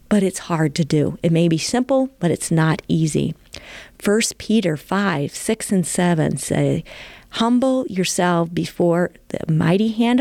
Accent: American